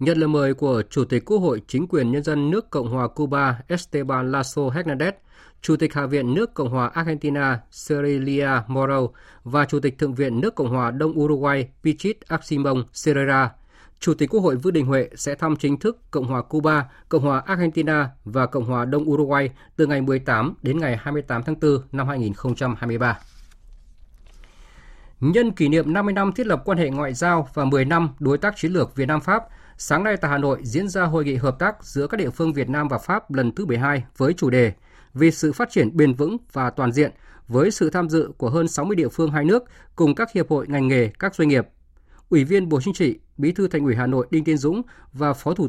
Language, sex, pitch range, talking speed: Vietnamese, male, 130-160 Hz, 220 wpm